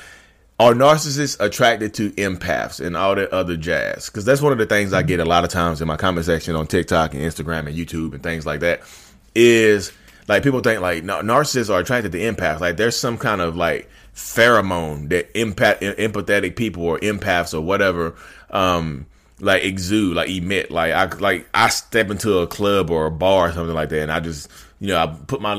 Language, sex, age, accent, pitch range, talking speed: English, male, 30-49, American, 85-115 Hz, 210 wpm